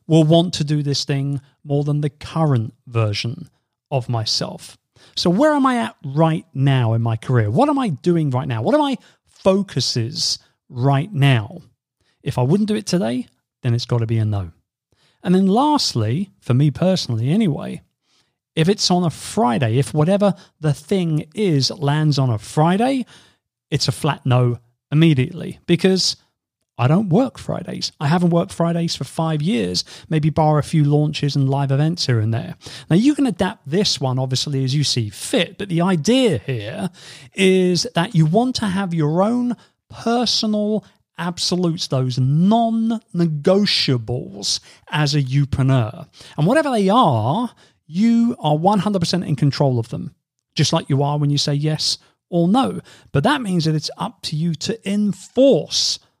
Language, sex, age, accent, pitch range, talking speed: English, male, 40-59, British, 135-190 Hz, 170 wpm